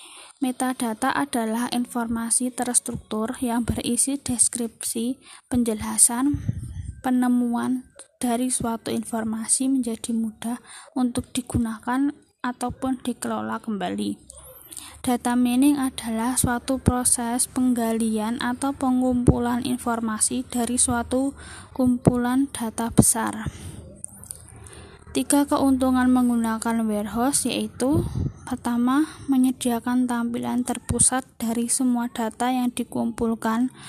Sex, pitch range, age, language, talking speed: female, 230-255 Hz, 20-39, Indonesian, 85 wpm